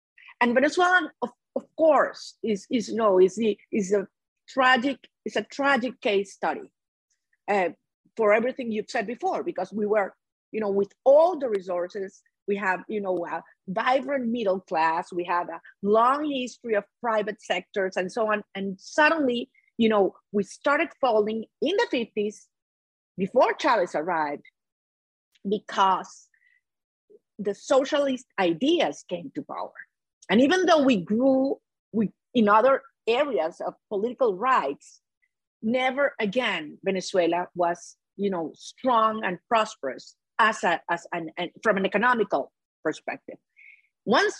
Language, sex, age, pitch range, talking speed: English, female, 50-69, 195-275 Hz, 140 wpm